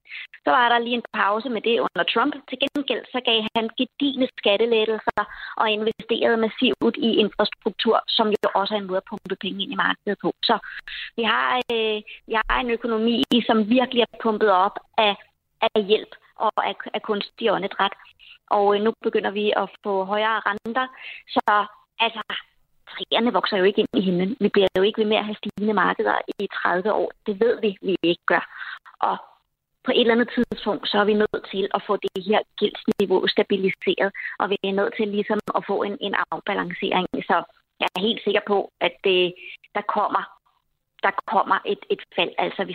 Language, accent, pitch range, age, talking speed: Danish, native, 205-240 Hz, 20-39, 190 wpm